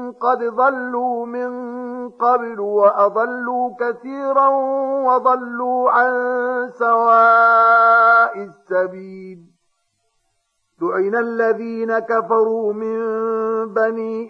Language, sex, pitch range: Arabic, male, 195-230 Hz